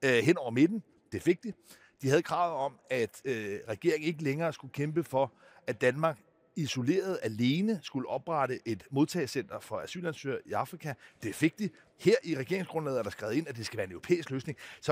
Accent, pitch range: native, 135-180 Hz